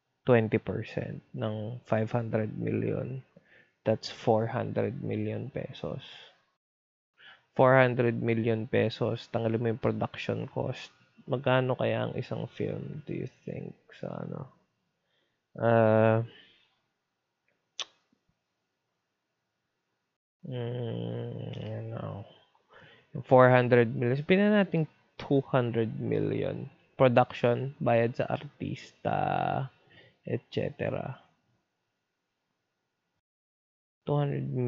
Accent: native